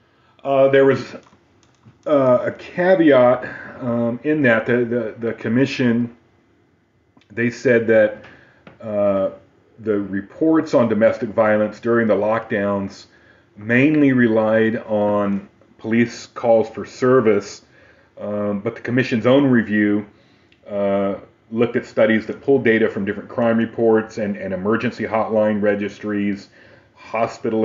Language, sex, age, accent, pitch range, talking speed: English, male, 40-59, American, 100-120 Hz, 120 wpm